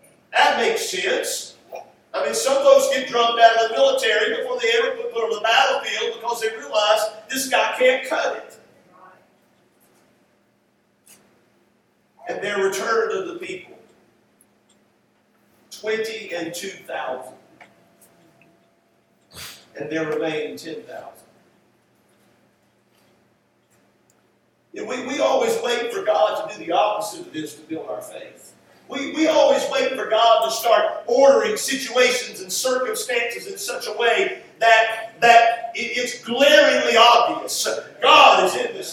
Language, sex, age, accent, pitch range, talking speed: English, male, 50-69, American, 220-320 Hz, 130 wpm